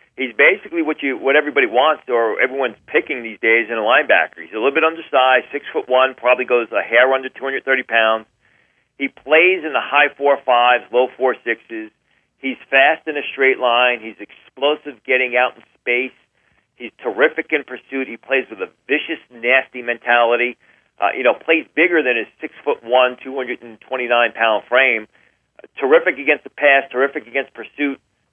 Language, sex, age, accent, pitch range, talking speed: English, male, 40-59, American, 120-140 Hz, 190 wpm